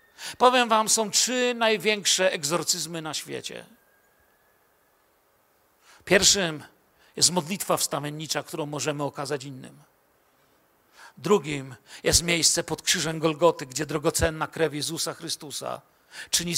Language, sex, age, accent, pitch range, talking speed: Polish, male, 50-69, native, 170-225 Hz, 100 wpm